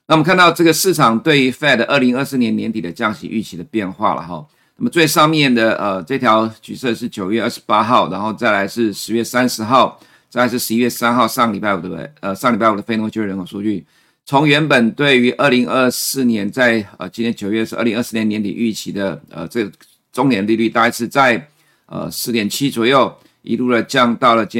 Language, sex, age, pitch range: Chinese, male, 50-69, 105-125 Hz